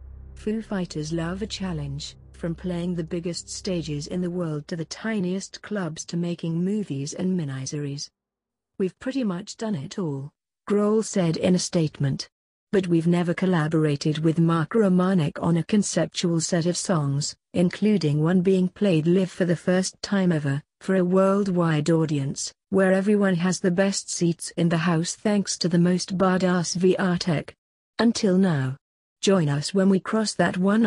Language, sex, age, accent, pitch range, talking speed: English, female, 50-69, British, 165-195 Hz, 165 wpm